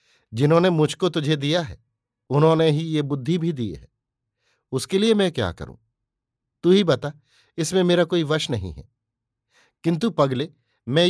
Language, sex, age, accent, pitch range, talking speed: Hindi, male, 50-69, native, 120-160 Hz, 155 wpm